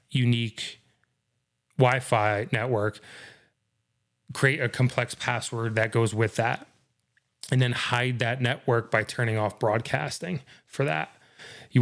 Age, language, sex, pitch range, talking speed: 30-49, English, male, 115-130 Hz, 115 wpm